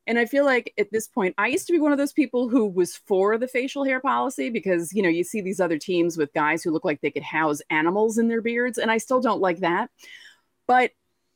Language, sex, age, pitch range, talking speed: English, female, 30-49, 165-240 Hz, 260 wpm